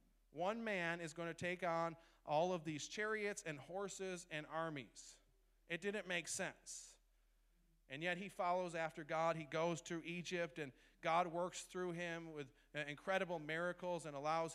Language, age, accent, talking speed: English, 40-59, American, 160 wpm